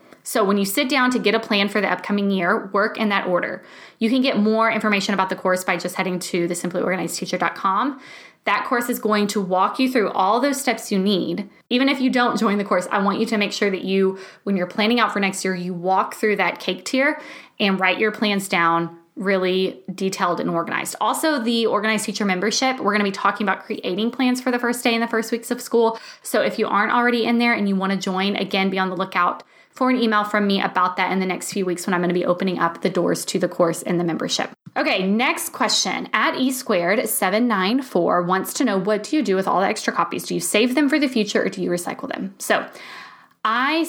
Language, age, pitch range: English, 20-39, 185-235 Hz